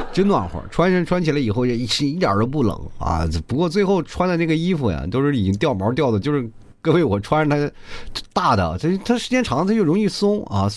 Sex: male